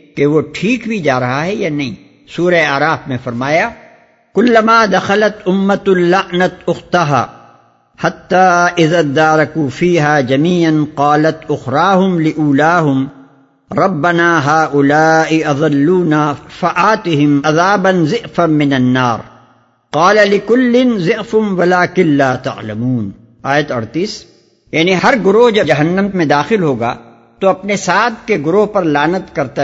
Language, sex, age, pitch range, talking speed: Urdu, male, 60-79, 140-190 Hz, 100 wpm